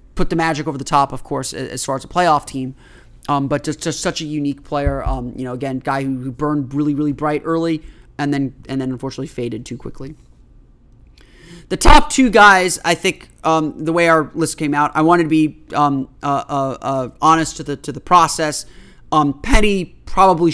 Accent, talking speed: American, 210 wpm